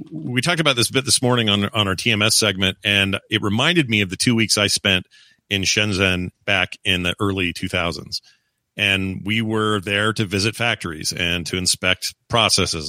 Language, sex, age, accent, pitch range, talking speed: English, male, 40-59, American, 100-125 Hz, 190 wpm